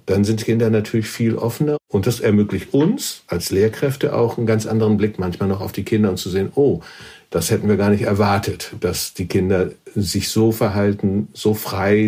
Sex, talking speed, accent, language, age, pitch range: male, 200 wpm, German, German, 50-69, 95-110 Hz